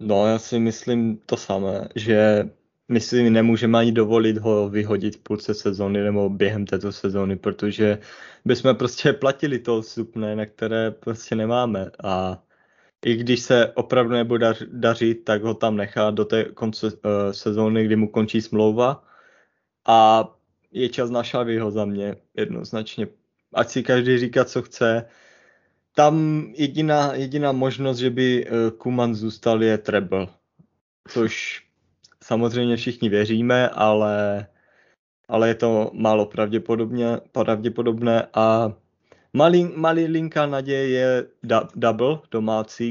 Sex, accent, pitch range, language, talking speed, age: male, native, 110-120 Hz, Czech, 130 wpm, 20-39